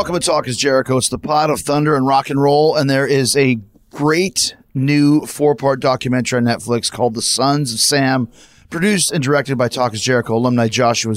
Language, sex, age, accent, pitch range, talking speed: English, male, 30-49, American, 115-135 Hz, 205 wpm